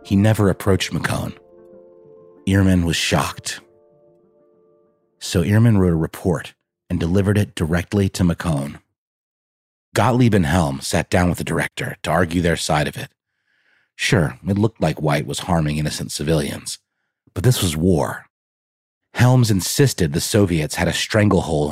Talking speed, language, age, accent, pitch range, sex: 145 wpm, English, 30-49, American, 85-115 Hz, male